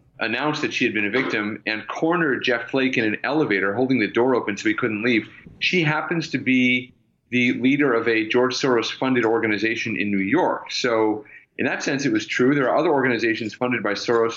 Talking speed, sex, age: 215 wpm, male, 30-49